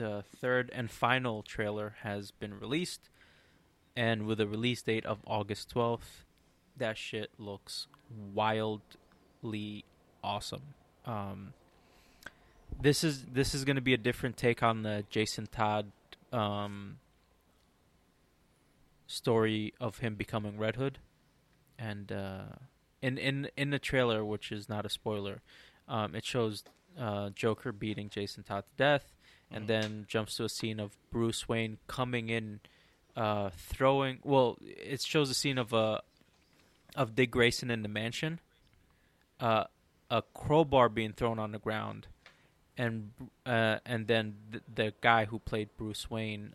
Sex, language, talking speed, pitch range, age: male, English, 140 wpm, 105-125 Hz, 20-39